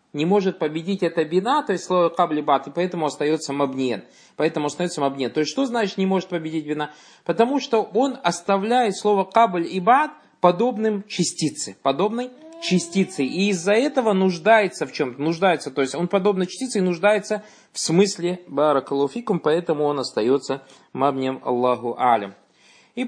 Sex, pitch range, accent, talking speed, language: male, 135-190 Hz, native, 160 wpm, Russian